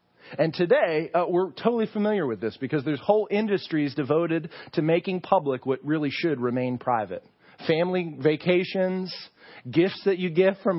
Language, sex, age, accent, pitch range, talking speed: English, male, 40-59, American, 125-185 Hz, 155 wpm